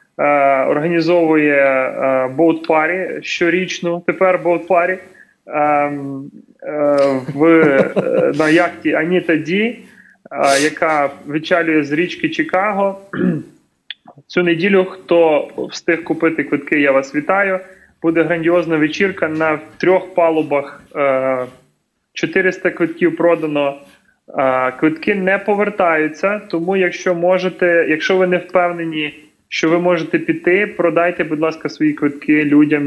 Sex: male